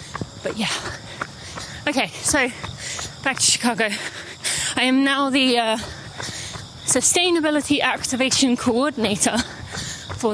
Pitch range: 230-275 Hz